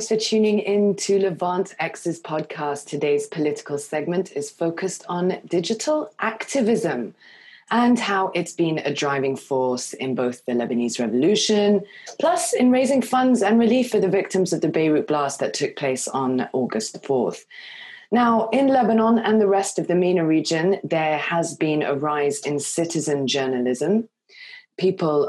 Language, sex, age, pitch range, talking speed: English, female, 20-39, 145-215 Hz, 155 wpm